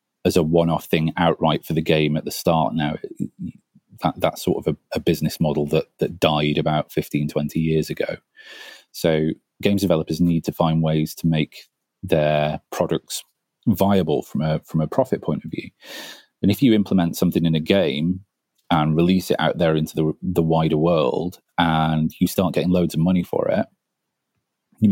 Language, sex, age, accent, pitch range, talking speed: English, male, 30-49, British, 80-90 Hz, 185 wpm